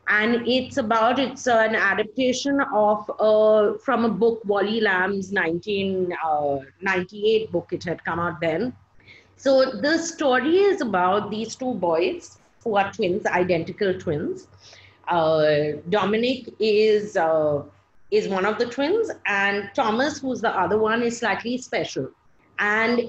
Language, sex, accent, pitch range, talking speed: English, female, Indian, 190-245 Hz, 140 wpm